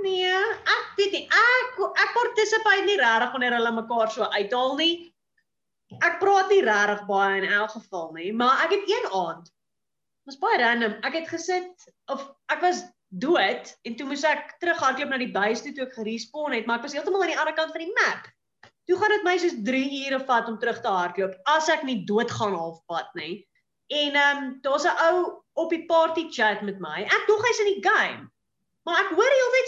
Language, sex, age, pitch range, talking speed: English, female, 30-49, 260-385 Hz, 210 wpm